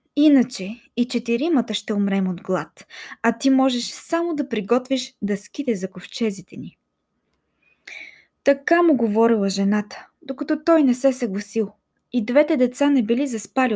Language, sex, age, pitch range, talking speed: Bulgarian, female, 20-39, 220-315 Hz, 145 wpm